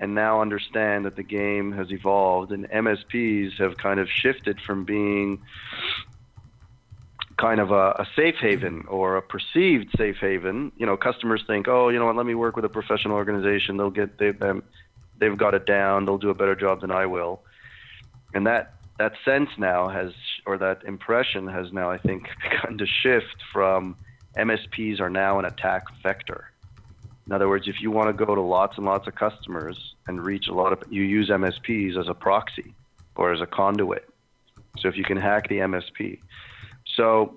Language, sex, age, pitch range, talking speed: English, male, 30-49, 95-110 Hz, 190 wpm